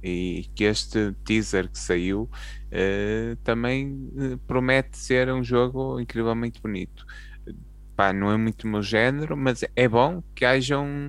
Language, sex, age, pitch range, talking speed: Portuguese, male, 20-39, 100-135 Hz, 140 wpm